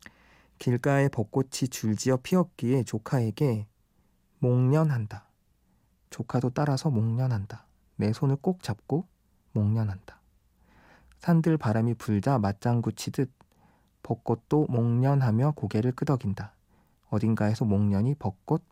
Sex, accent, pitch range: male, native, 105-135 Hz